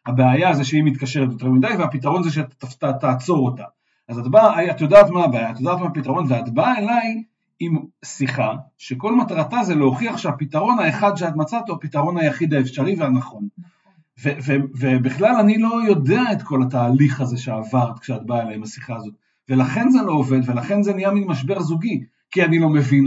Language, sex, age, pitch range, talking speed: Hebrew, male, 50-69, 130-175 Hz, 185 wpm